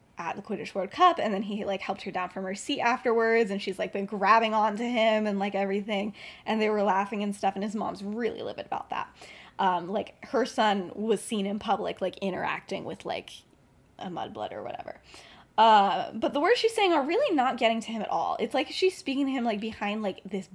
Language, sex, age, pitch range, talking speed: English, female, 10-29, 200-265 Hz, 235 wpm